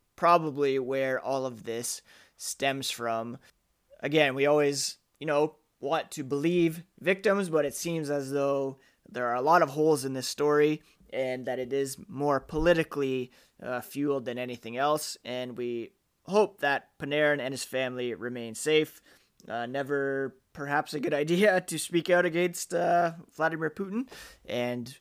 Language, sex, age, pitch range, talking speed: English, male, 20-39, 130-160 Hz, 155 wpm